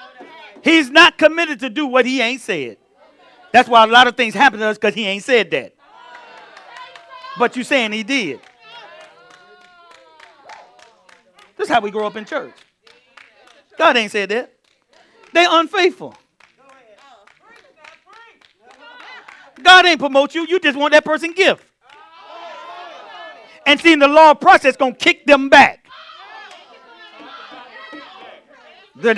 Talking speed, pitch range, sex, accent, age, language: 130 wpm, 250-360 Hz, male, American, 40-59, English